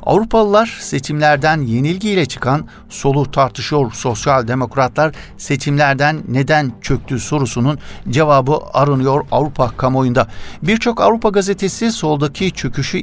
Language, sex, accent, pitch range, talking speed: Turkish, male, native, 125-150 Hz, 95 wpm